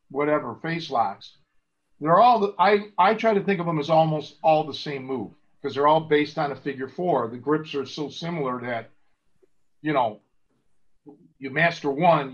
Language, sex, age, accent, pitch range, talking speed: English, male, 50-69, American, 130-165 Hz, 185 wpm